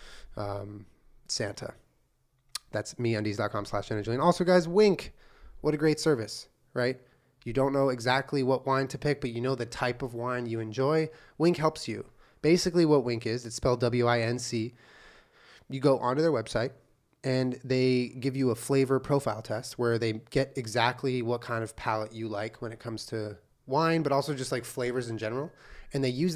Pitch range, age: 115-140 Hz, 20-39